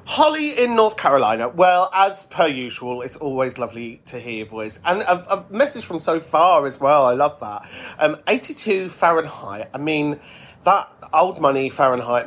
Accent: British